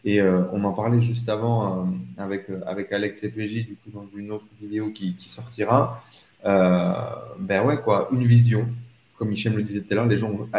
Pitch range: 95-120 Hz